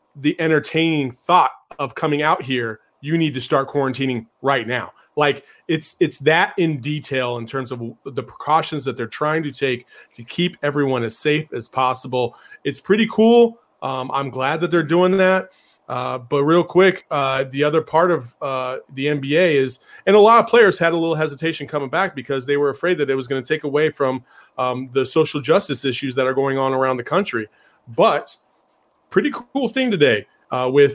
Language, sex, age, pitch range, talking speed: English, male, 30-49, 130-155 Hz, 200 wpm